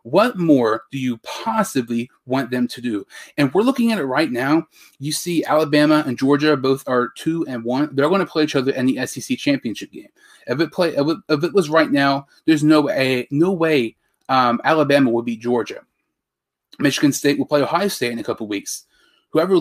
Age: 30-49